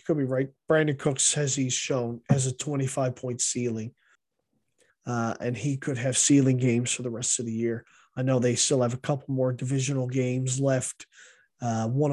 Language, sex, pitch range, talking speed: English, male, 125-155 Hz, 195 wpm